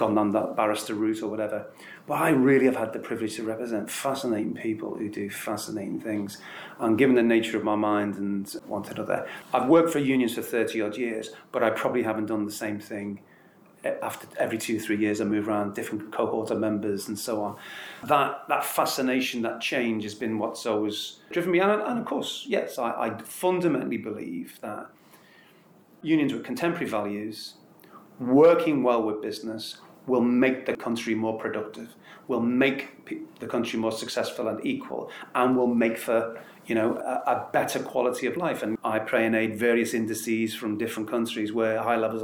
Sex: male